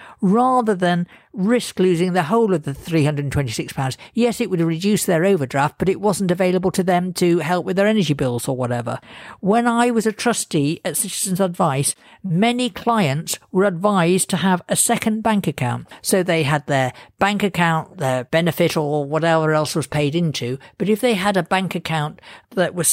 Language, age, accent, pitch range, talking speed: English, 50-69, British, 155-210 Hz, 185 wpm